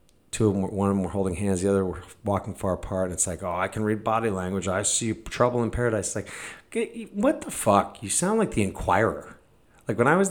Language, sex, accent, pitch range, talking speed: English, male, American, 90-115 Hz, 250 wpm